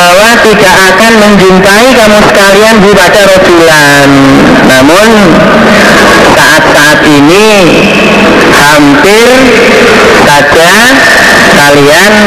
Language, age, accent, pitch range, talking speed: Indonesian, 40-59, native, 140-200 Hz, 60 wpm